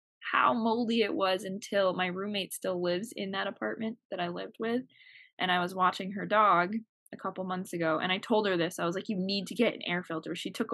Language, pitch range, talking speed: English, 170-220 Hz, 240 wpm